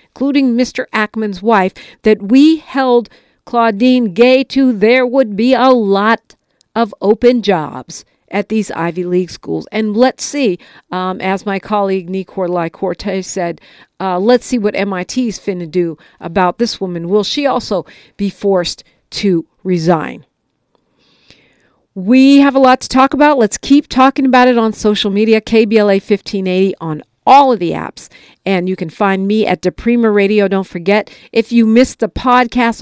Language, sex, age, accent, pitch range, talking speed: English, female, 50-69, American, 190-245 Hz, 165 wpm